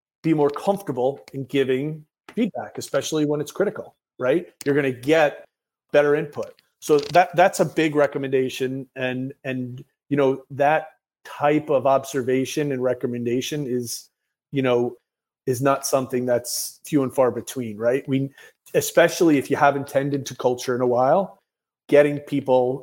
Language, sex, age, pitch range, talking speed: English, male, 30-49, 130-150 Hz, 150 wpm